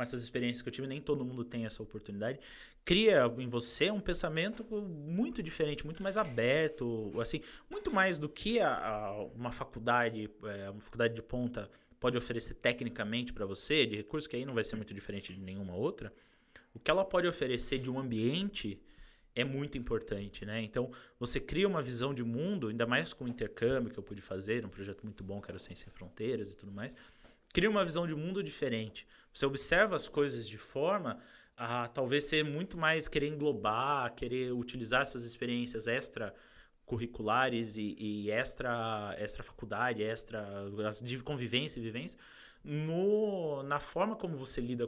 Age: 20-39